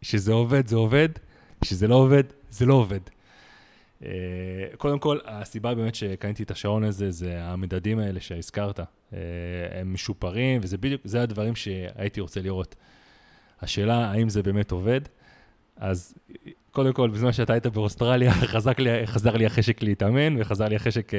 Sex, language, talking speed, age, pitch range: male, Hebrew, 145 wpm, 20-39, 95-120 Hz